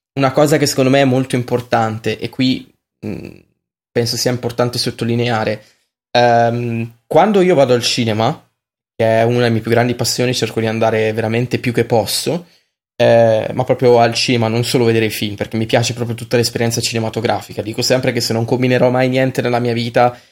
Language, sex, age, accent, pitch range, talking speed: Italian, male, 20-39, native, 115-130 Hz, 190 wpm